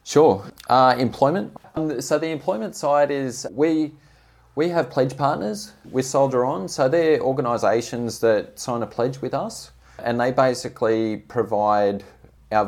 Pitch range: 95-120 Hz